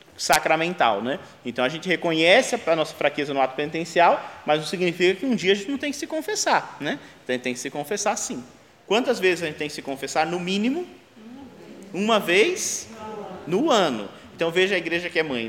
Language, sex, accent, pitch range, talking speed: Portuguese, male, Brazilian, 160-240 Hz, 200 wpm